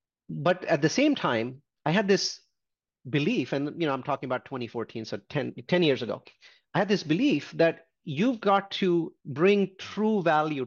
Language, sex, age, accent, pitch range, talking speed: English, male, 30-49, Indian, 135-180 Hz, 180 wpm